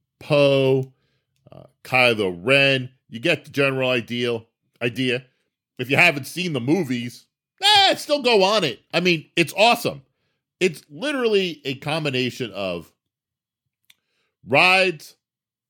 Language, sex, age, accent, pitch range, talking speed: English, male, 40-59, American, 110-150 Hz, 115 wpm